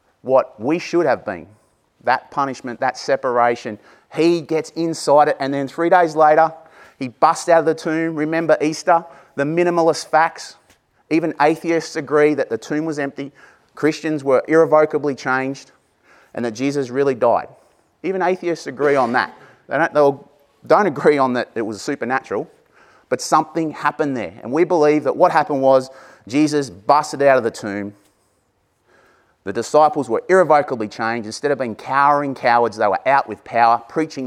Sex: male